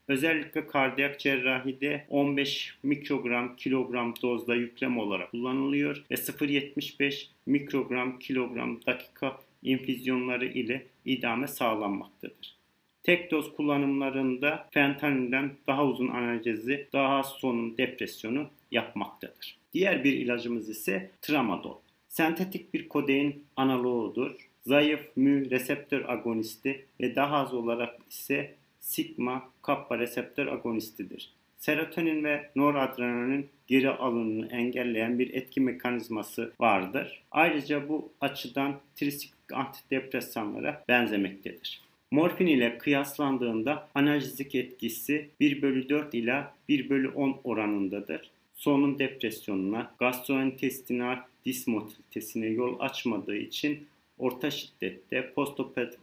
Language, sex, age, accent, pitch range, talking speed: Turkish, male, 40-59, native, 120-145 Hz, 95 wpm